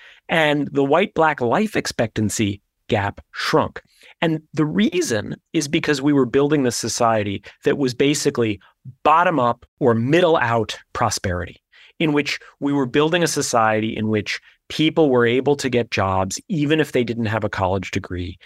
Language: English